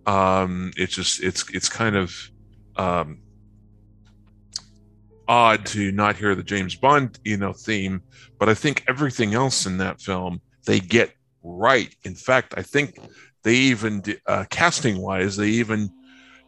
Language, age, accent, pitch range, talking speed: English, 50-69, American, 95-115 Hz, 145 wpm